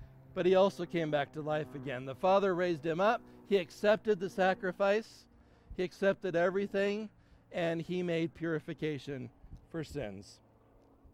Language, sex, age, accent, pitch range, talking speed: English, male, 60-79, American, 125-195 Hz, 140 wpm